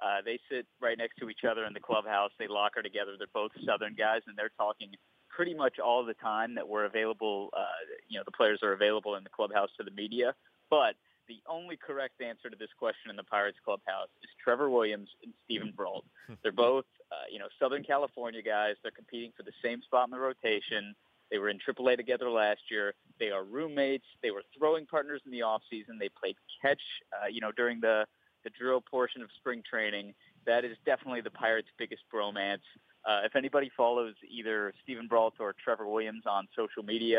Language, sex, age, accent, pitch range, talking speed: English, male, 30-49, American, 105-125 Hz, 210 wpm